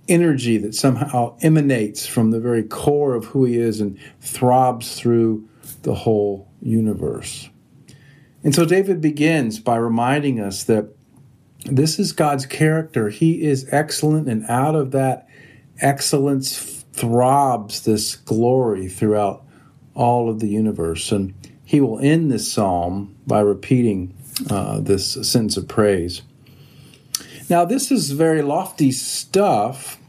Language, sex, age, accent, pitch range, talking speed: English, male, 50-69, American, 110-145 Hz, 130 wpm